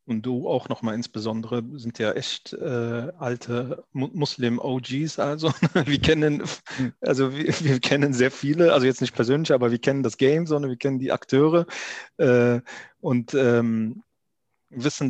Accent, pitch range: German, 115-130 Hz